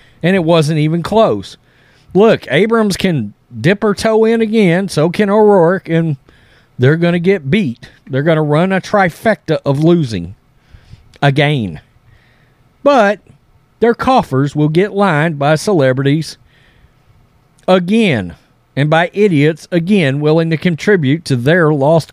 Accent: American